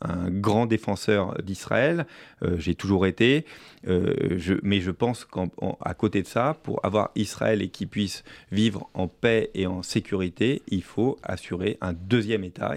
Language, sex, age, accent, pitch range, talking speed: French, male, 30-49, French, 100-115 Hz, 165 wpm